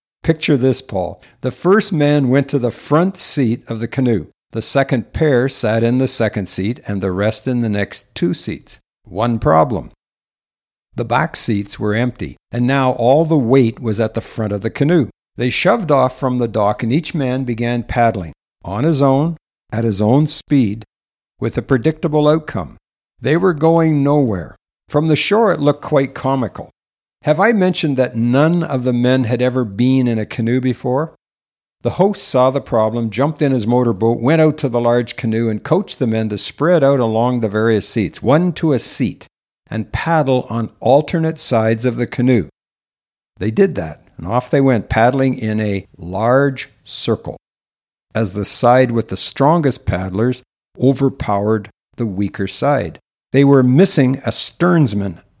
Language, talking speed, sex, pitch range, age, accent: English, 175 wpm, male, 110-140 Hz, 60-79, American